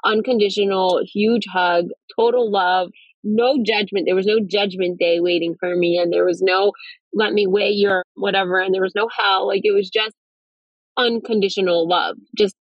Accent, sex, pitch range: American, female, 180-230 Hz